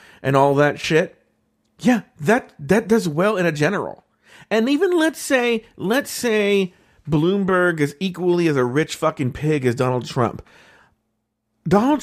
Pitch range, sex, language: 140-195 Hz, male, English